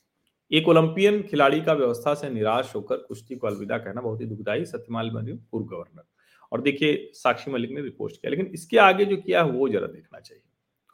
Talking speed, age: 105 wpm, 40-59